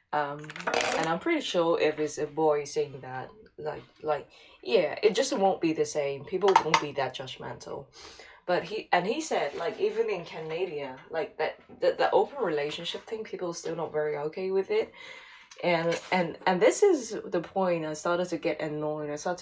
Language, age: Chinese, 20-39